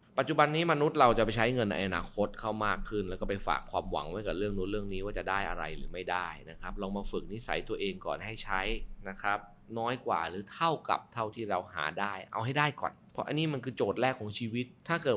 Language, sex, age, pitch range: Thai, male, 20-39, 95-130 Hz